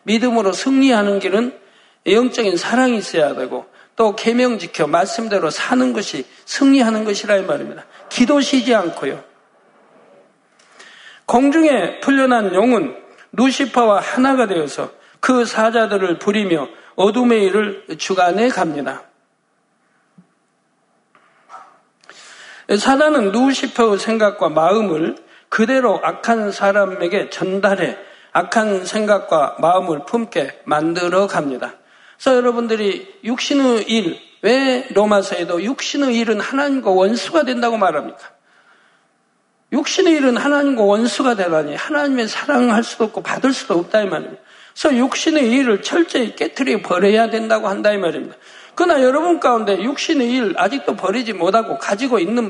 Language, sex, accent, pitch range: Korean, male, native, 200-265 Hz